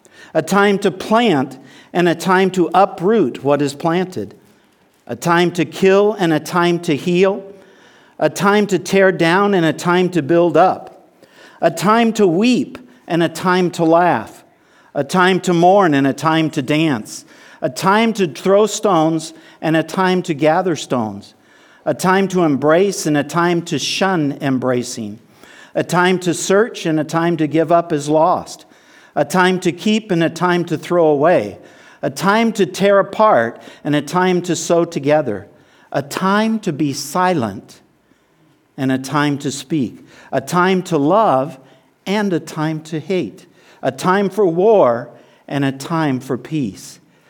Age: 50-69